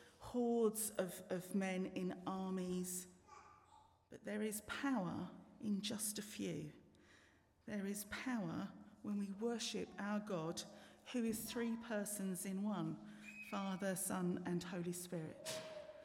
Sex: female